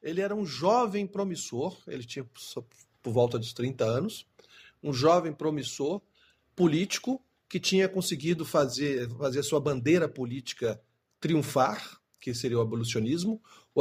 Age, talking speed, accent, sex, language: 50-69, 140 wpm, Brazilian, male, Portuguese